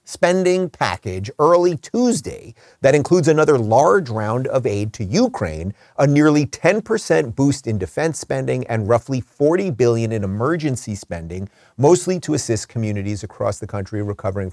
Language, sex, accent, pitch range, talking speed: English, male, American, 105-145 Hz, 145 wpm